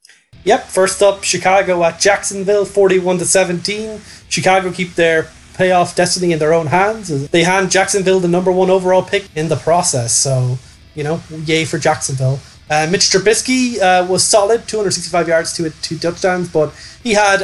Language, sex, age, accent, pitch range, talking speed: English, male, 20-39, Irish, 145-180 Hz, 160 wpm